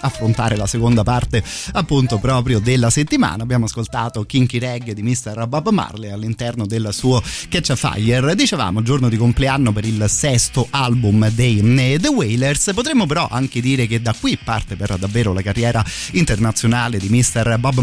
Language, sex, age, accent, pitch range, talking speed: Italian, male, 30-49, native, 105-130 Hz, 165 wpm